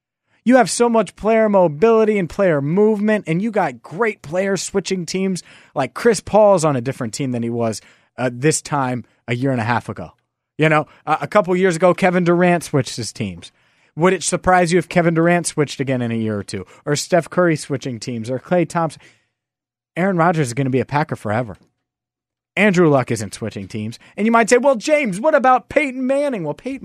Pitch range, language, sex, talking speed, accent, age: 120-175 Hz, English, male, 210 wpm, American, 30-49